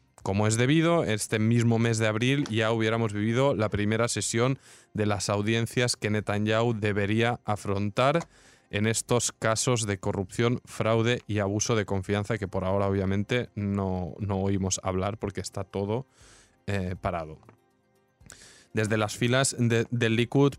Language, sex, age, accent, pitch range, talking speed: Spanish, male, 20-39, Spanish, 105-125 Hz, 145 wpm